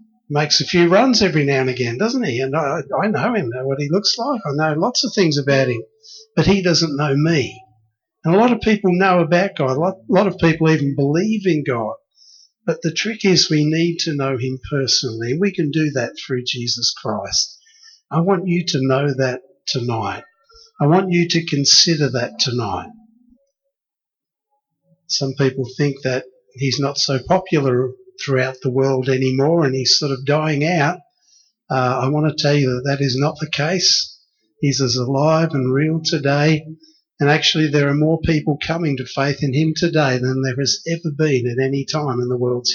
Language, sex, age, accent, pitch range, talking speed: English, male, 50-69, Australian, 135-175 Hz, 195 wpm